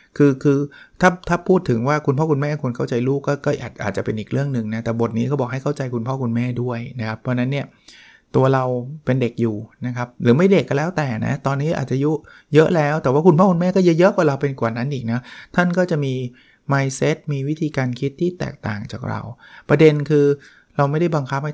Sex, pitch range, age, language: male, 115-145 Hz, 20-39, Thai